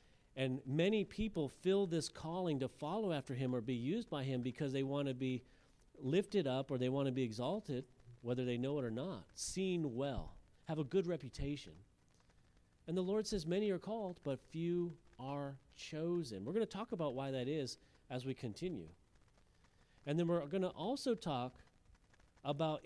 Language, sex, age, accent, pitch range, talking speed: English, male, 40-59, American, 115-160 Hz, 185 wpm